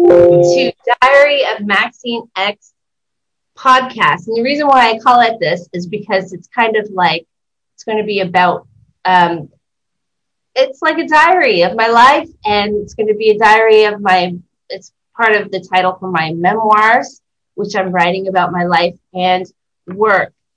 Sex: female